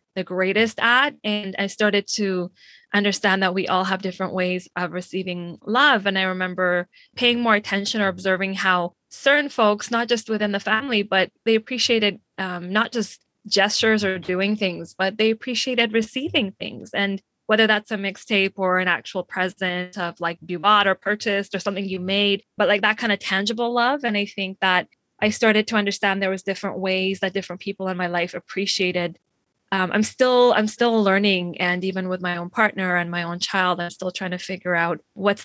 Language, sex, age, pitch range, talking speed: English, female, 20-39, 185-215 Hz, 195 wpm